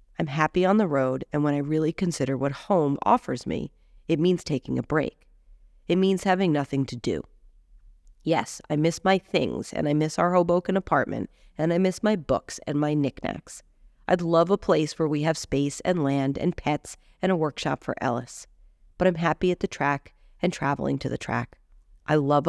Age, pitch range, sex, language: 40-59, 135-175 Hz, female, English